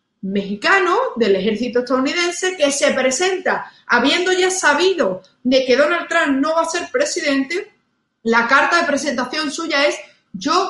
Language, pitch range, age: Spanish, 230-315 Hz, 30-49